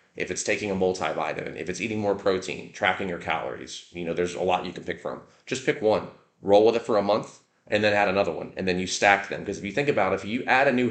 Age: 30-49